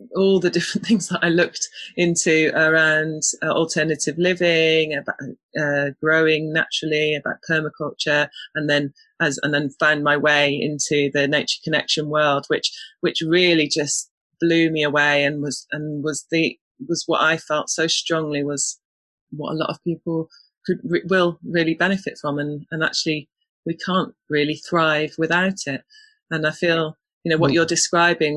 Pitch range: 150-170 Hz